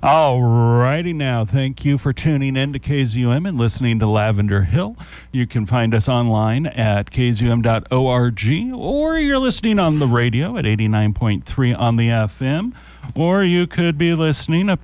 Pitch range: 110-155 Hz